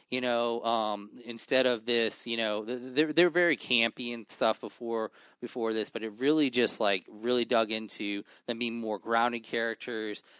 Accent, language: American, English